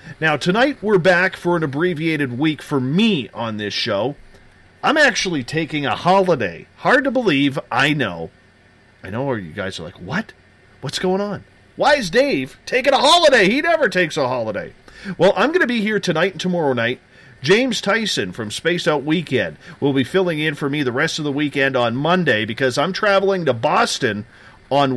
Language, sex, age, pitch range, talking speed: English, male, 40-59, 130-180 Hz, 190 wpm